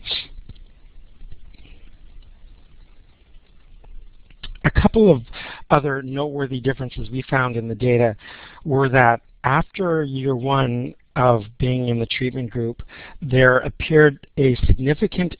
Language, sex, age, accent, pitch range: English, male, 50-69, American, 115-135 Hz